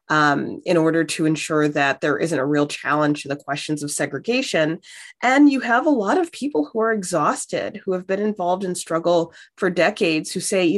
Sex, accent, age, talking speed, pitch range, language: female, American, 30-49, 205 wpm, 155-200 Hz, English